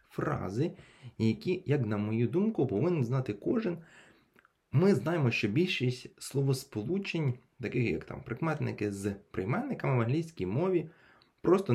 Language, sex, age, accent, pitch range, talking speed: Ukrainian, male, 20-39, native, 115-150 Hz, 125 wpm